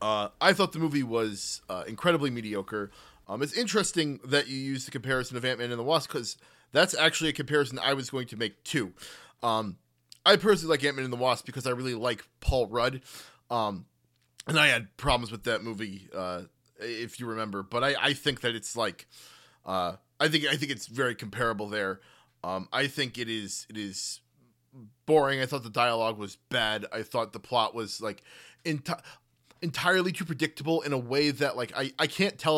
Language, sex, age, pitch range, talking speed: English, male, 20-39, 110-145 Hz, 200 wpm